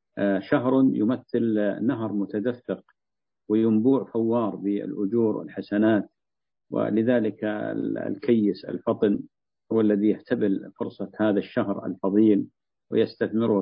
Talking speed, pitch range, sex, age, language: 85 wpm, 100-115 Hz, male, 50-69, Arabic